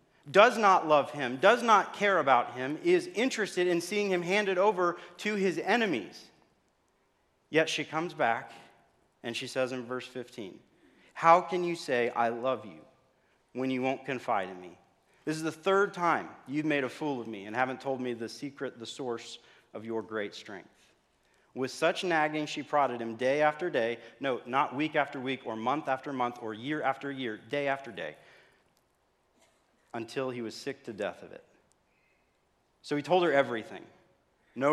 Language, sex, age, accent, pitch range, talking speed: English, male, 40-59, American, 115-150 Hz, 180 wpm